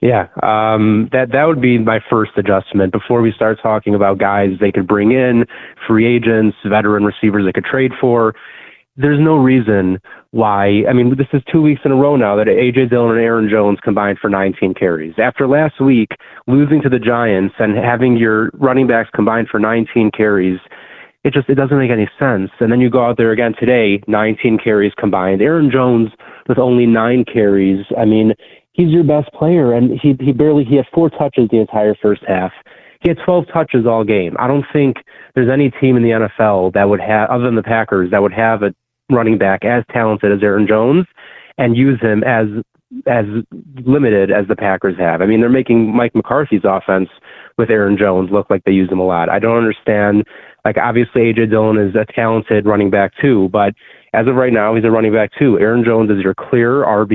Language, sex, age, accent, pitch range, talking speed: English, male, 30-49, American, 105-125 Hz, 210 wpm